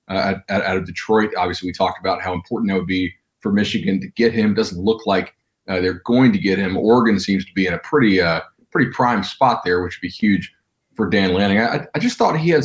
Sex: male